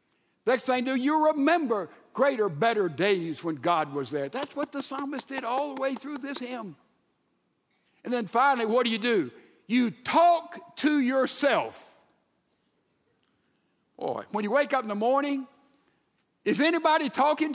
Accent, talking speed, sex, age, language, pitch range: American, 155 wpm, male, 60-79, English, 220-295 Hz